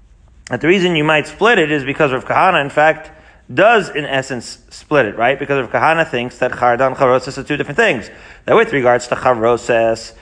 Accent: American